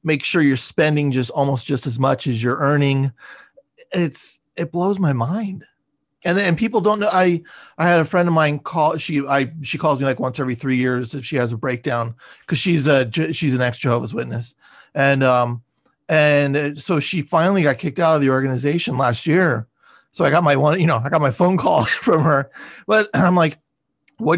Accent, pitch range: American, 135-175 Hz